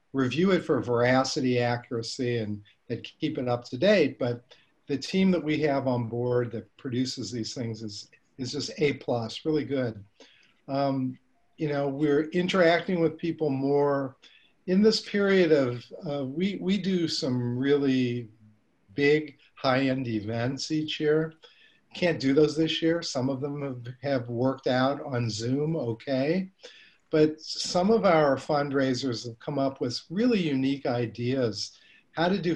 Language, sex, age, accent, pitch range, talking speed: English, male, 50-69, American, 120-155 Hz, 155 wpm